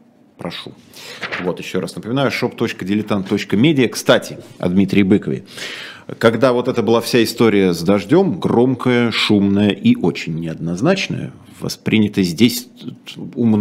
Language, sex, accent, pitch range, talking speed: Russian, male, native, 95-130 Hz, 105 wpm